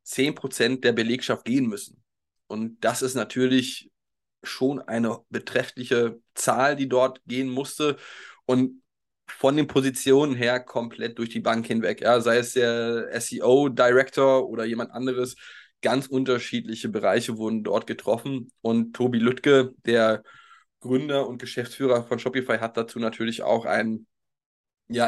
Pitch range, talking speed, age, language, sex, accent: 115-130 Hz, 135 wpm, 20-39, German, male, German